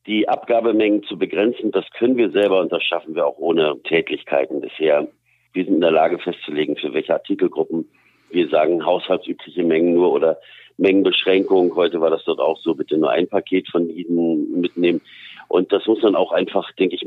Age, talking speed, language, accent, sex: 50-69, 185 wpm, German, German, male